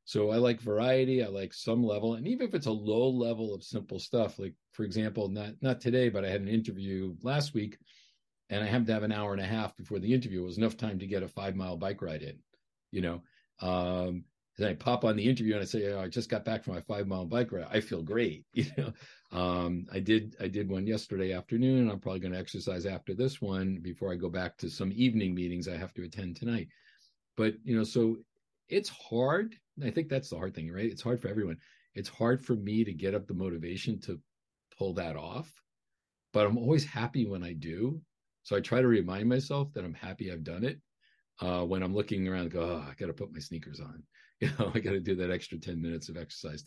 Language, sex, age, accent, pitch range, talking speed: English, male, 50-69, American, 95-120 Hz, 245 wpm